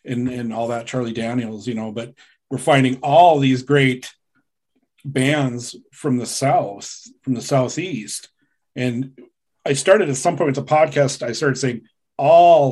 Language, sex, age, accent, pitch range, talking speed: English, male, 40-59, American, 130-150 Hz, 160 wpm